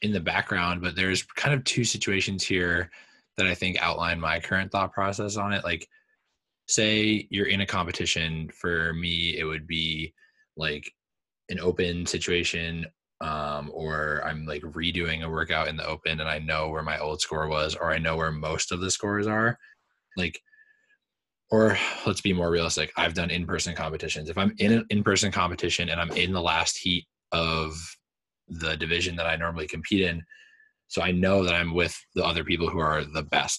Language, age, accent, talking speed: English, 20-39, American, 190 wpm